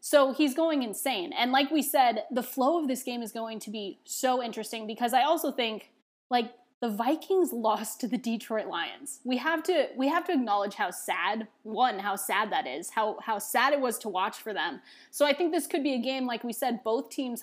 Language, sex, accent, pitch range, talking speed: English, female, American, 215-265 Hz, 230 wpm